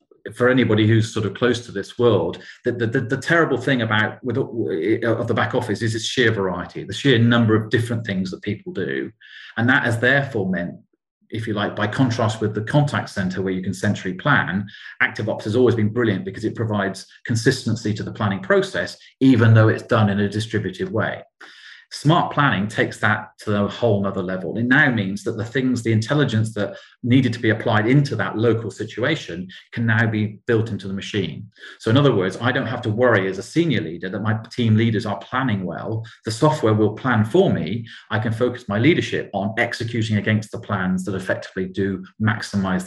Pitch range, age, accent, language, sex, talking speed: 100-120 Hz, 40-59, British, English, male, 205 wpm